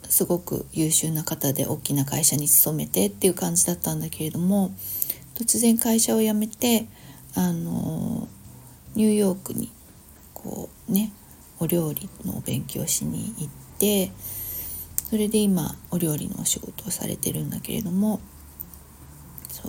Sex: female